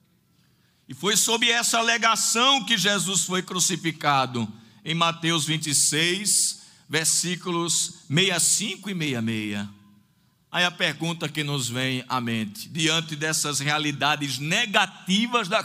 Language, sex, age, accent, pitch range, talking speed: Portuguese, male, 50-69, Brazilian, 155-235 Hz, 110 wpm